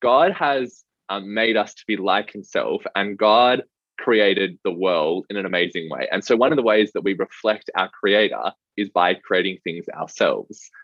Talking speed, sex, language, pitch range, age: 190 wpm, male, English, 95-115 Hz, 20-39